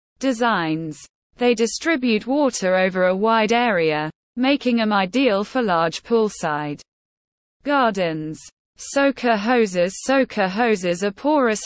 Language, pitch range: English, 175-250 Hz